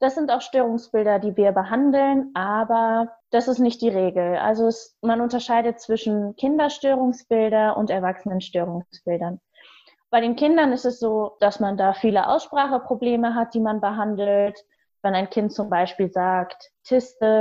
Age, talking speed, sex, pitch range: 20-39, 145 wpm, female, 200-245 Hz